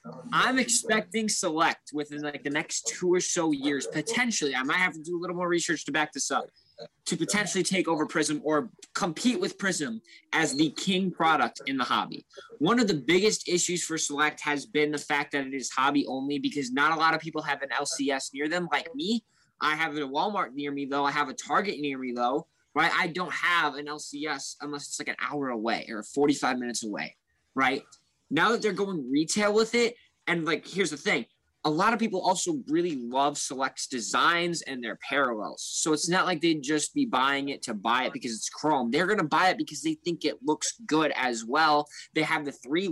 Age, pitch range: 20-39, 145-185 Hz